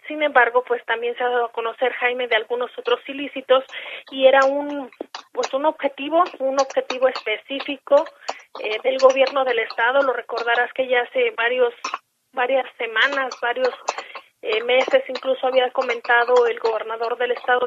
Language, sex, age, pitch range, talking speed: Spanish, female, 30-49, 245-285 Hz, 155 wpm